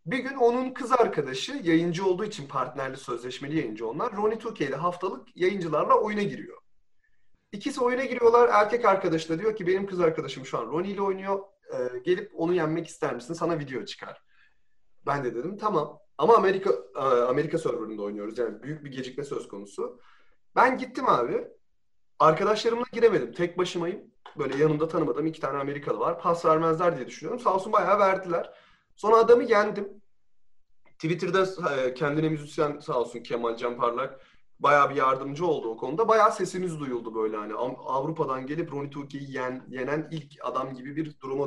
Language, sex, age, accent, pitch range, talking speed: English, male, 30-49, Turkish, 145-225 Hz, 165 wpm